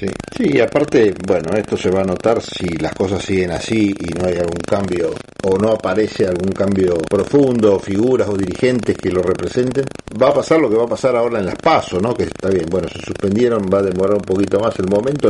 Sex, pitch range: male, 90-115 Hz